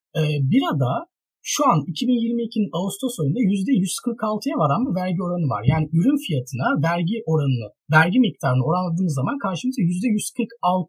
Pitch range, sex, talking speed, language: 150-235 Hz, male, 125 wpm, Turkish